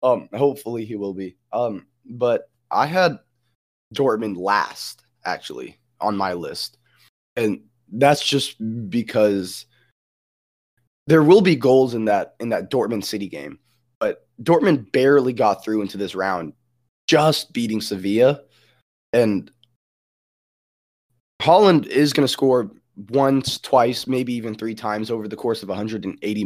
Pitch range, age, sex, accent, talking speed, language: 110-135 Hz, 20-39, male, American, 130 wpm, English